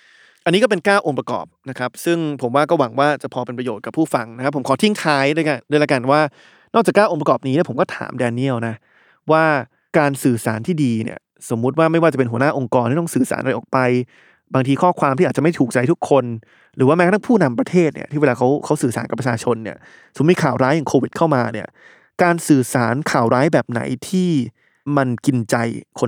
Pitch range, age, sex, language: 125-165 Hz, 20-39, male, Thai